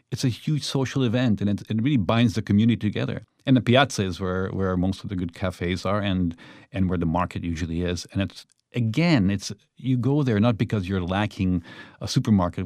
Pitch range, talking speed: 95-120 Hz, 215 wpm